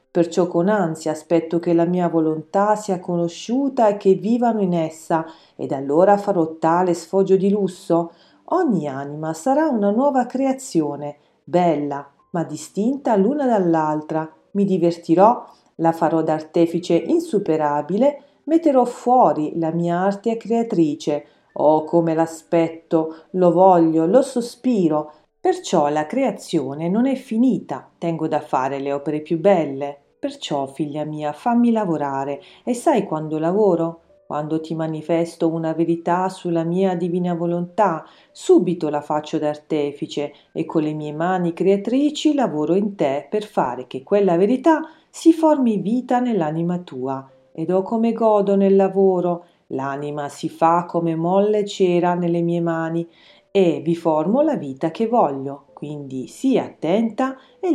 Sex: female